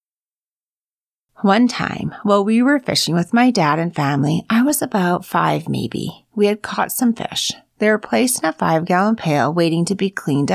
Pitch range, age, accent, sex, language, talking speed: 170-255 Hz, 40-59, American, female, English, 180 wpm